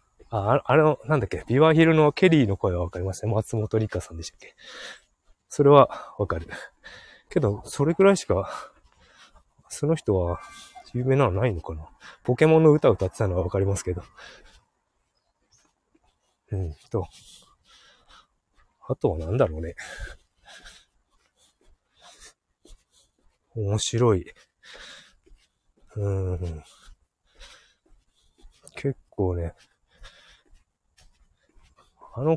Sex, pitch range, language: male, 95-135 Hz, Japanese